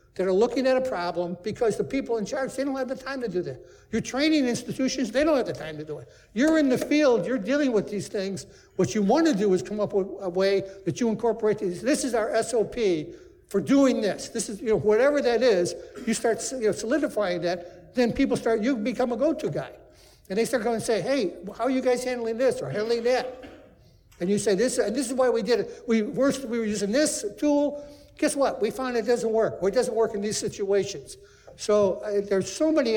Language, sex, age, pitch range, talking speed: English, male, 60-79, 185-255 Hz, 235 wpm